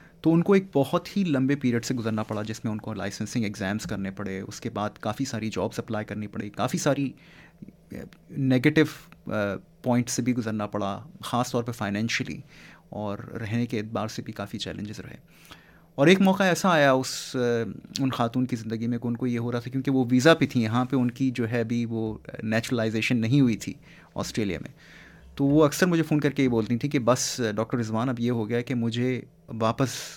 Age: 30-49